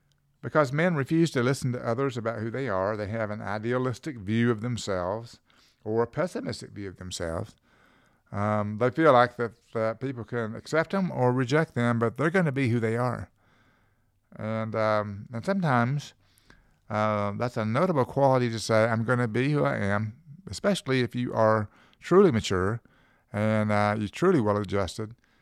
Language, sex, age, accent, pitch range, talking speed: English, male, 50-69, American, 105-130 Hz, 175 wpm